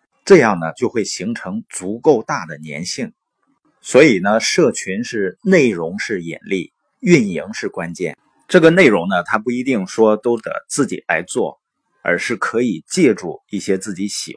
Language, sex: Chinese, male